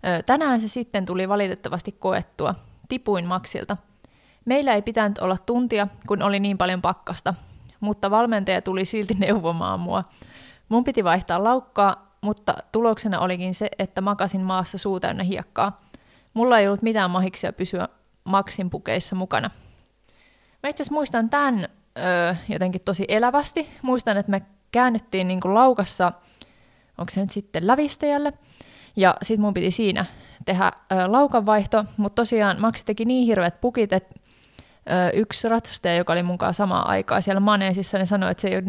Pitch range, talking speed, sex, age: 185-225 Hz, 145 wpm, female, 20-39